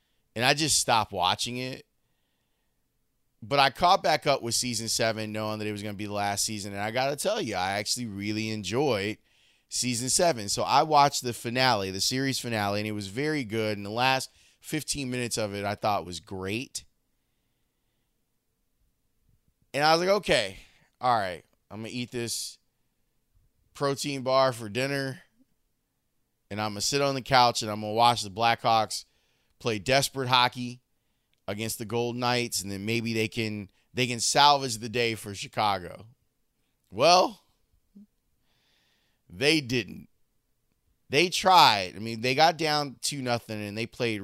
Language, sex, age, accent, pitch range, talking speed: English, male, 20-39, American, 105-130 Hz, 170 wpm